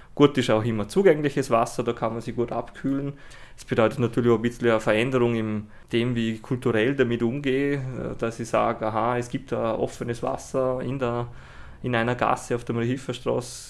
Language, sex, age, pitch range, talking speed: German, male, 20-39, 115-130 Hz, 195 wpm